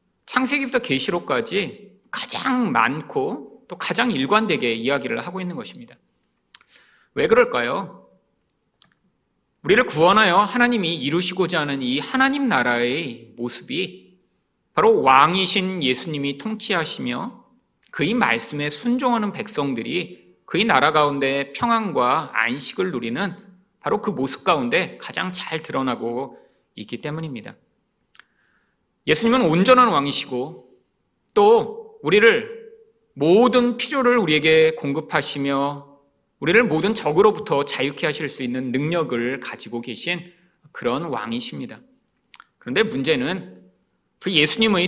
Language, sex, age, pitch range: Korean, male, 40-59, 140-235 Hz